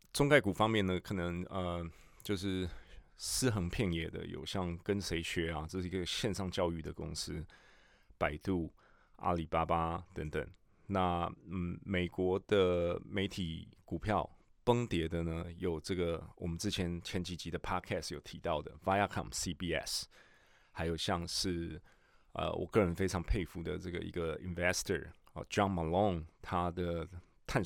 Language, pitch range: Chinese, 85-95 Hz